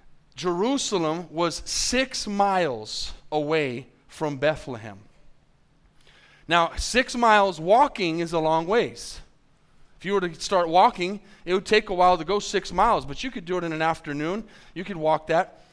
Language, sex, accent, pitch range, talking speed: English, male, American, 155-195 Hz, 160 wpm